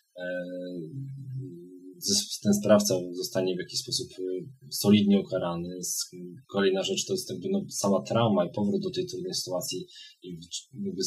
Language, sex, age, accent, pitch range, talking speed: Polish, male, 20-39, native, 95-125 Hz, 125 wpm